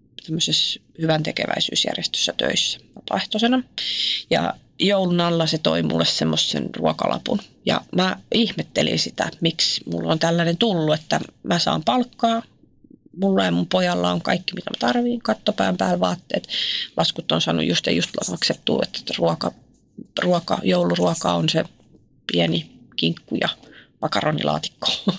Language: Finnish